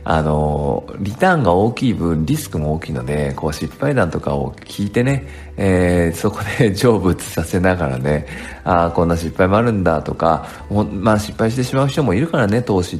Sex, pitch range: male, 75-115 Hz